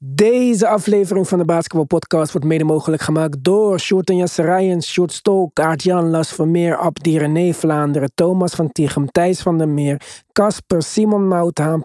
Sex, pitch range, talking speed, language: male, 155-200 Hz, 150 wpm, Dutch